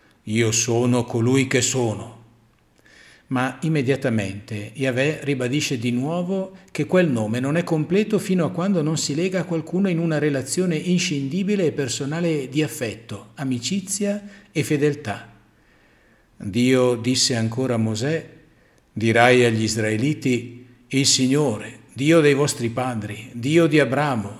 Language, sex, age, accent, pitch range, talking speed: Italian, male, 50-69, native, 115-150 Hz, 130 wpm